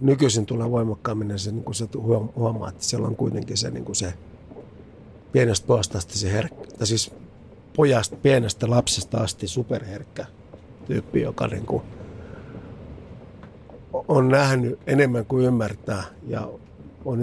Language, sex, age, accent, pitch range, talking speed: Finnish, male, 50-69, native, 95-120 Hz, 100 wpm